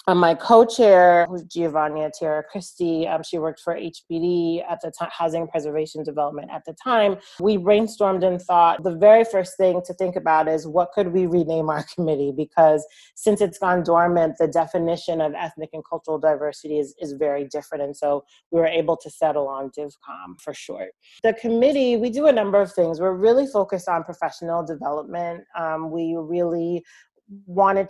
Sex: female